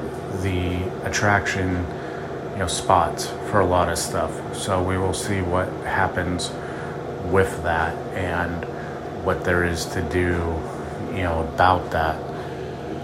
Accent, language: American, English